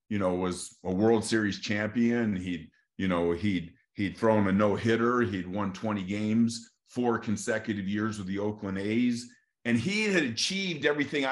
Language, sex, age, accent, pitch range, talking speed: English, male, 50-69, American, 100-120 Hz, 170 wpm